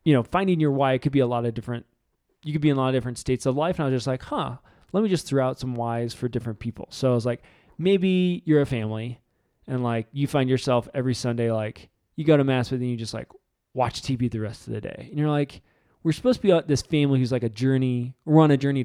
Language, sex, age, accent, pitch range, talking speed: English, male, 20-39, American, 120-145 Hz, 280 wpm